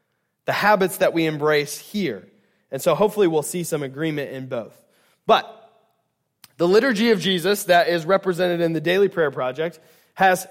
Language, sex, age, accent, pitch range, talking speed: English, male, 20-39, American, 160-205 Hz, 165 wpm